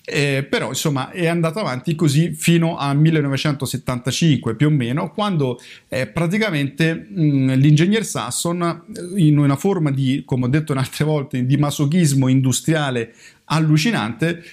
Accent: native